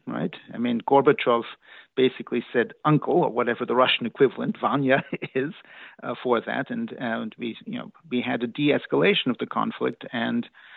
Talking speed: 165 wpm